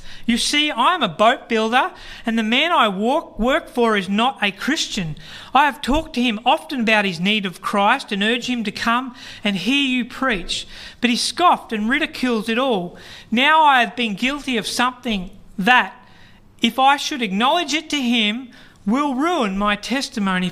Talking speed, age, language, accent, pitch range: 185 wpm, 40-59, English, Australian, 210-270 Hz